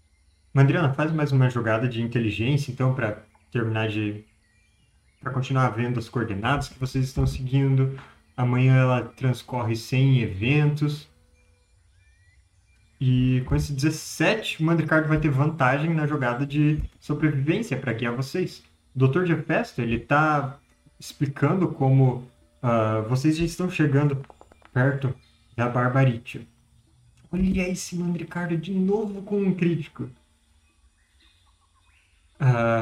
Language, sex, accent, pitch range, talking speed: Portuguese, male, Brazilian, 115-150 Hz, 120 wpm